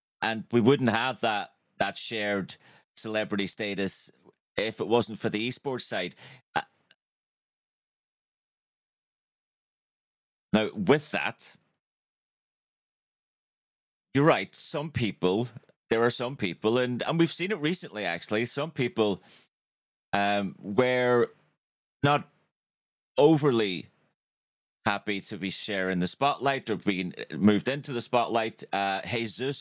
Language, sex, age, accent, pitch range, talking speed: English, male, 30-49, British, 100-120 Hz, 110 wpm